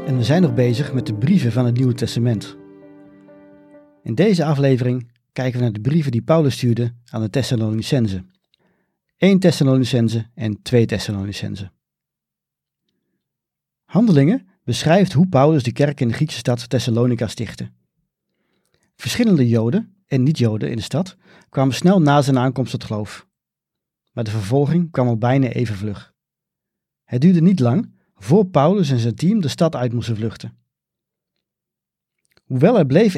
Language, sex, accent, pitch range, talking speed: Dutch, male, Dutch, 115-165 Hz, 150 wpm